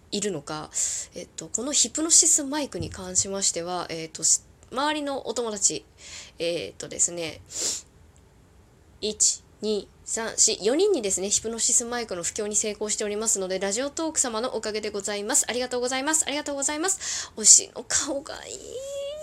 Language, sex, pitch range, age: Japanese, female, 200-300 Hz, 20-39